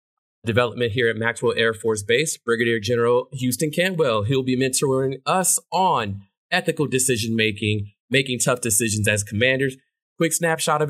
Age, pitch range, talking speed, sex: 20-39, 120-150 Hz, 150 wpm, male